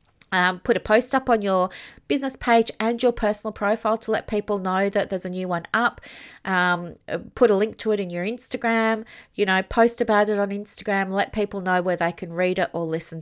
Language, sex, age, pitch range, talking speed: English, female, 30-49, 185-225 Hz, 220 wpm